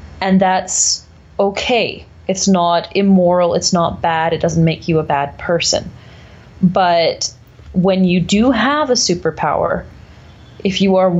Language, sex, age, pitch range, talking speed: English, female, 30-49, 160-190 Hz, 140 wpm